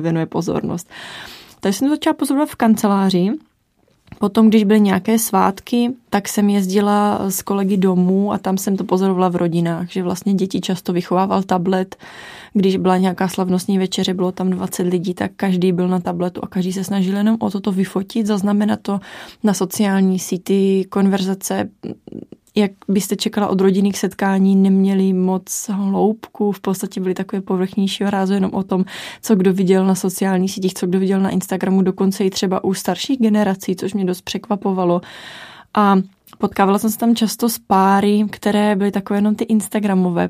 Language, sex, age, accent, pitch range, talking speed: Czech, female, 20-39, native, 185-205 Hz, 170 wpm